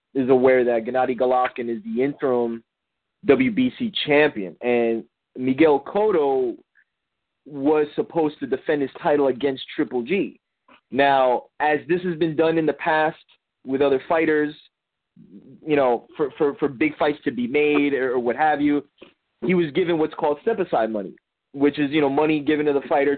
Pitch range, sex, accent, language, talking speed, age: 130-165 Hz, male, American, English, 170 wpm, 20-39